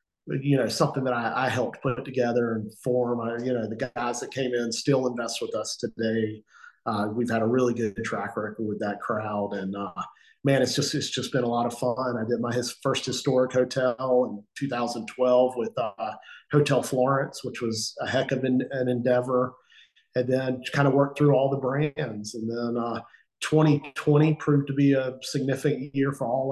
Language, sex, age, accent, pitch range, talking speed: English, male, 40-59, American, 120-140 Hz, 195 wpm